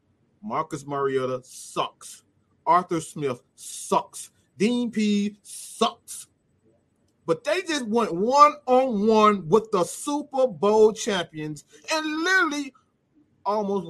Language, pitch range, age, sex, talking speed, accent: English, 145-240 Hz, 30-49, male, 95 wpm, American